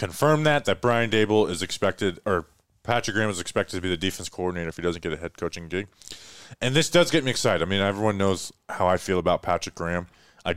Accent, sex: American, male